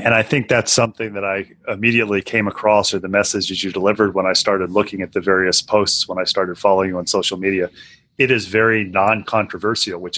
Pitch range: 100-115 Hz